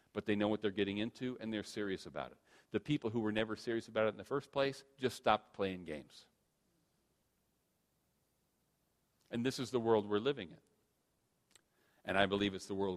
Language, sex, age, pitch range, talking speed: English, male, 40-59, 95-135 Hz, 195 wpm